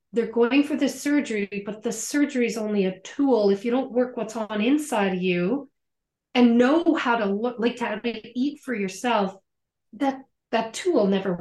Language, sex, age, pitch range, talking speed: English, female, 40-59, 200-275 Hz, 180 wpm